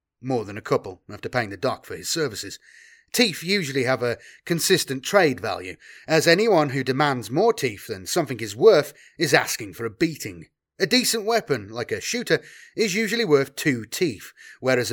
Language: English